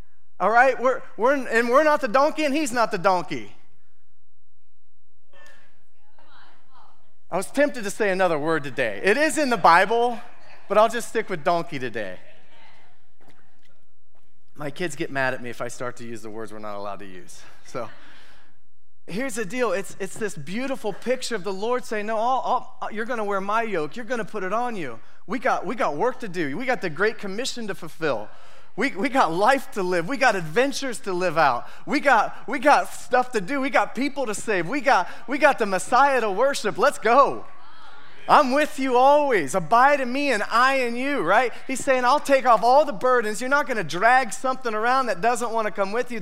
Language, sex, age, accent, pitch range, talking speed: English, male, 30-49, American, 175-255 Hz, 205 wpm